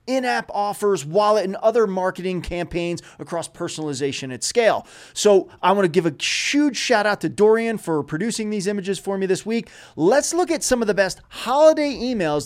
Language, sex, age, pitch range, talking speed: English, male, 30-49, 160-225 Hz, 190 wpm